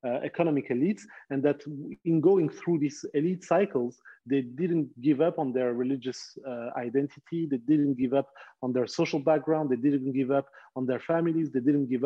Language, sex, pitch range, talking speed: English, male, 120-150 Hz, 190 wpm